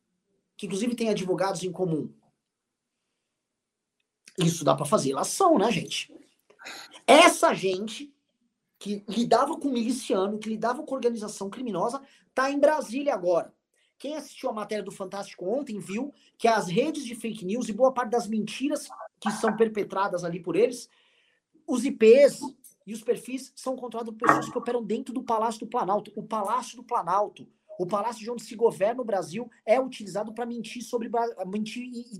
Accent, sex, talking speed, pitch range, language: Brazilian, male, 165 wpm, 200-265 Hz, Portuguese